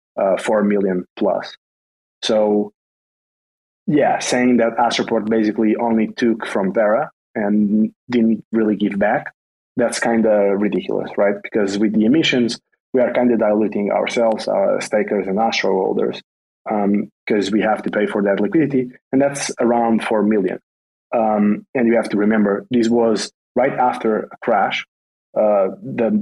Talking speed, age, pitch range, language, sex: 155 wpm, 20-39, 105-120 Hz, English, male